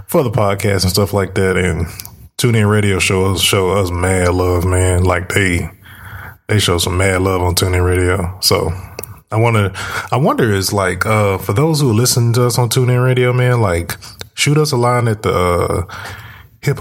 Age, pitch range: 20-39, 95-110 Hz